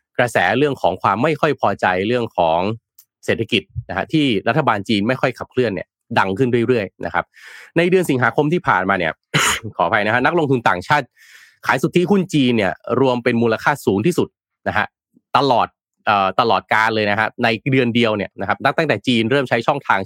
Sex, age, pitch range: male, 20-39, 100-130 Hz